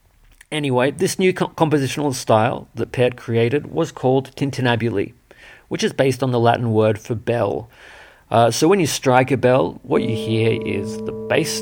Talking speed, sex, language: 170 wpm, male, English